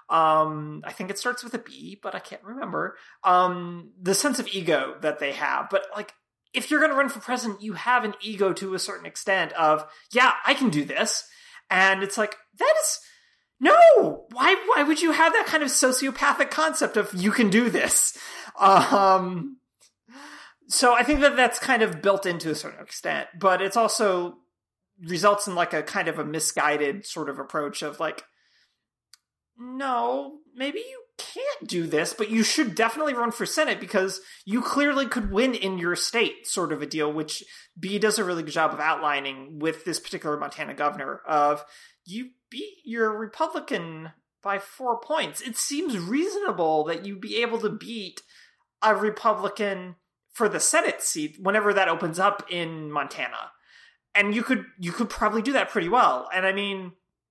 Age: 30-49